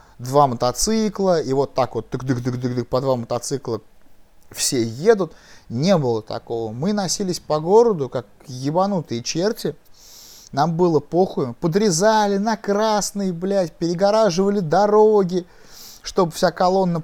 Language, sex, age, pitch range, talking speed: Russian, male, 20-39, 125-180 Hz, 115 wpm